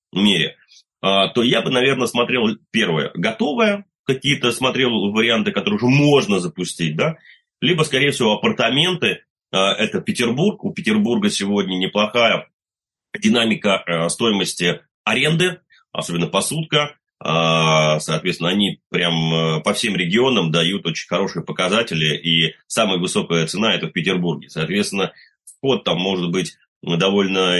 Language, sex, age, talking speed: Russian, male, 30-49, 115 wpm